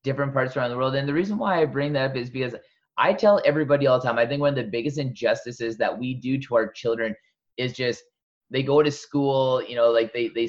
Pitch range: 120-145 Hz